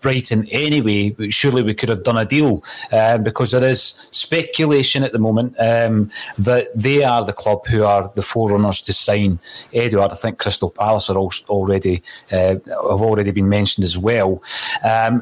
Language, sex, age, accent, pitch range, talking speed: English, male, 30-49, British, 105-130 Hz, 180 wpm